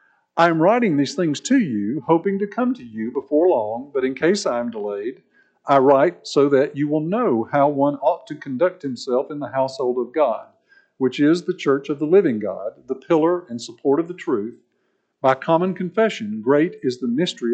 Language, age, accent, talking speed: English, 50-69, American, 205 wpm